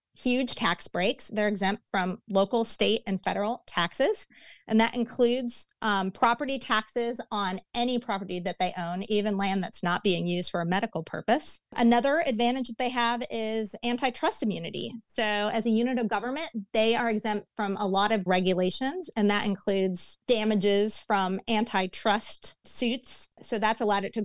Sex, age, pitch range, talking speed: female, 30-49, 195-240 Hz, 165 wpm